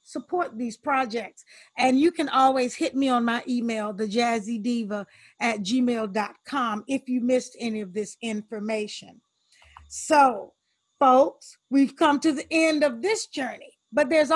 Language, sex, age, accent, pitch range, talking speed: English, female, 40-59, American, 230-295 Hz, 140 wpm